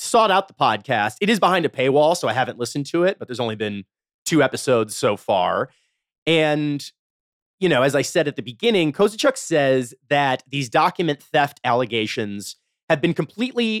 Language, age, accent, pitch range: English, 30-49, American, 120-155 Hz